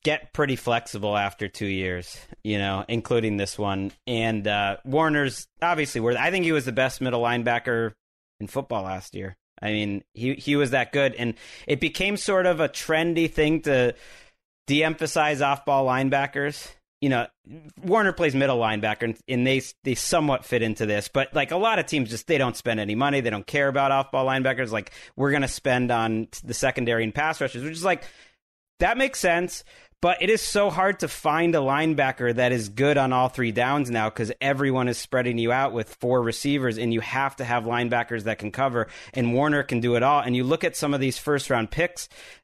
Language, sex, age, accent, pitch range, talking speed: English, male, 30-49, American, 115-150 Hz, 210 wpm